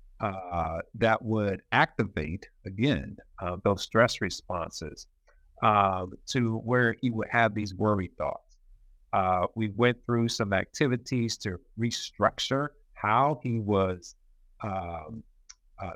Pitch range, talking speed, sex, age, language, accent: 100-125 Hz, 115 wpm, male, 50-69, English, American